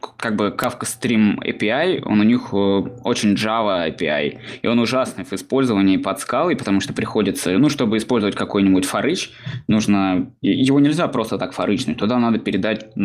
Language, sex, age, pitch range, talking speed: Russian, male, 20-39, 100-125 Hz, 160 wpm